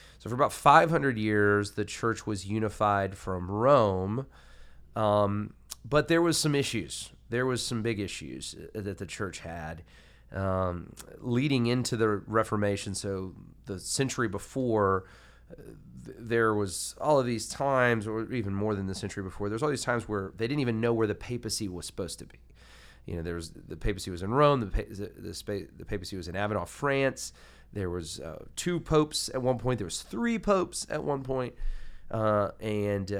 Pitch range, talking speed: 95-120 Hz, 185 wpm